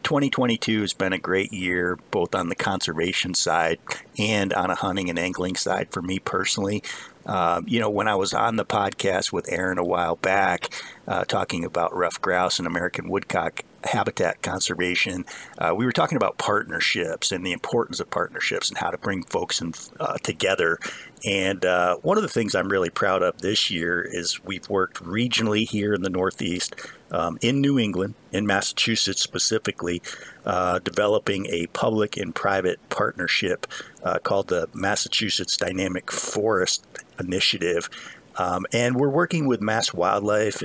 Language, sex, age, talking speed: English, male, 50-69, 165 wpm